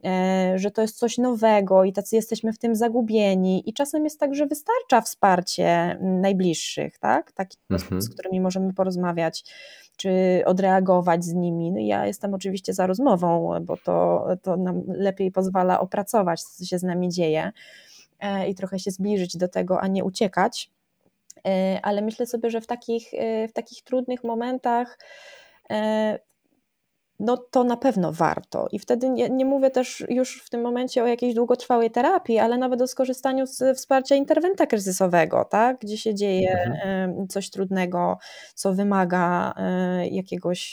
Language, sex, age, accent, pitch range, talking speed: Polish, female, 20-39, native, 180-235 Hz, 145 wpm